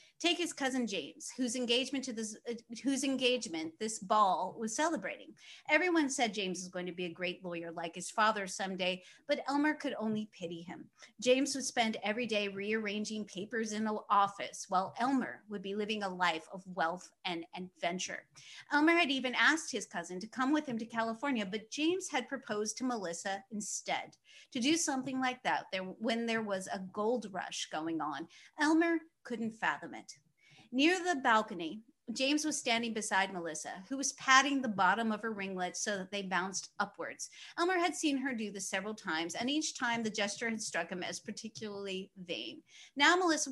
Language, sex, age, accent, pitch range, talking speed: English, female, 30-49, American, 195-275 Hz, 185 wpm